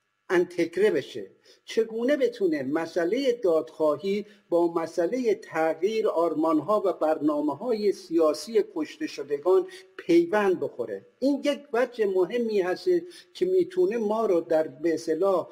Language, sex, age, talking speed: Persian, male, 50-69, 110 wpm